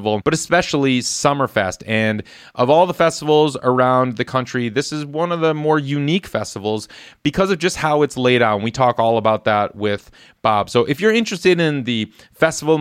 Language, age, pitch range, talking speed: English, 30-49, 115-150 Hz, 190 wpm